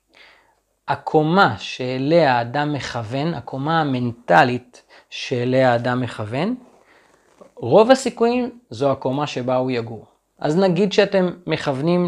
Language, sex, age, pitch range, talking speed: Hebrew, male, 30-49, 135-195 Hz, 100 wpm